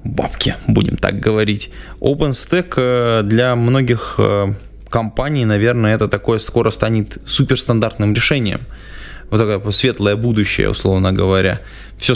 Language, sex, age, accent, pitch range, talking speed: Russian, male, 20-39, native, 100-115 Hz, 110 wpm